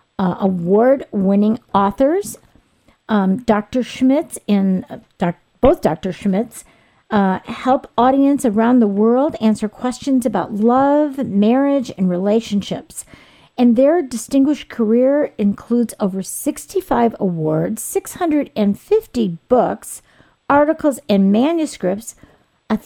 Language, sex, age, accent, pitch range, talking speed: English, female, 50-69, American, 195-260 Hz, 100 wpm